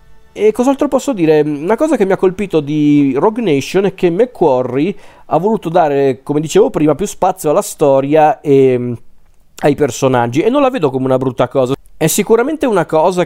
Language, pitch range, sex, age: Italian, 130-160 Hz, male, 40-59